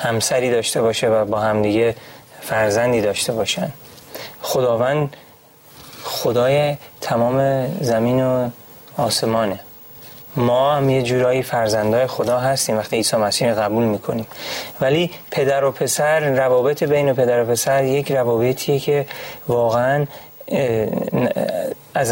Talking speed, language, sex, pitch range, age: 115 wpm, Persian, male, 120-145 Hz, 30-49